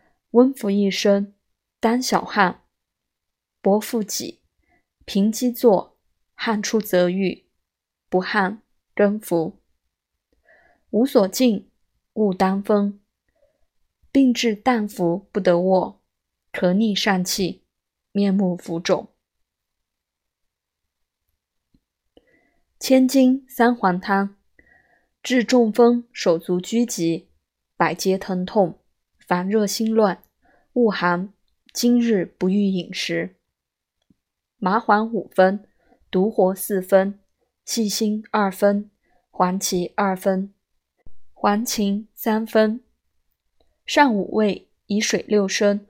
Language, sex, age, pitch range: Chinese, female, 20-39, 185-225 Hz